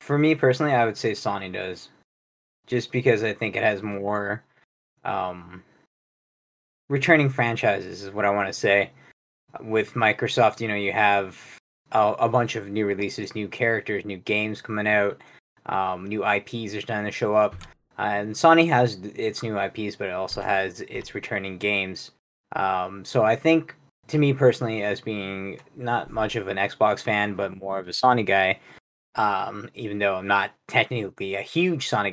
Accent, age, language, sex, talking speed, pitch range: American, 20-39, English, male, 175 wpm, 100-120 Hz